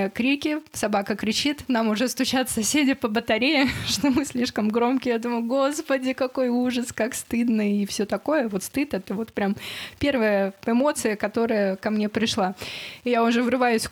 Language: Russian